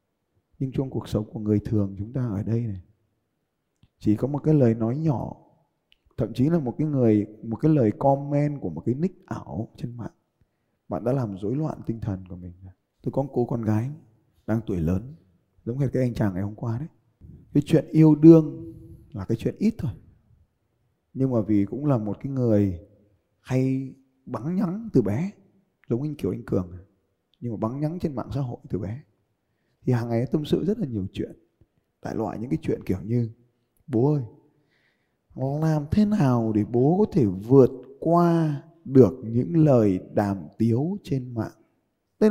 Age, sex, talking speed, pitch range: 20-39, male, 195 wpm, 110-165 Hz